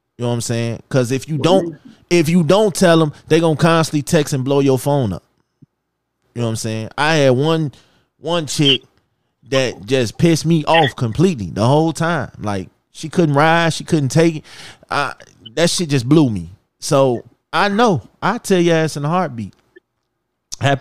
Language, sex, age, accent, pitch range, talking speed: English, male, 20-39, American, 135-185 Hz, 195 wpm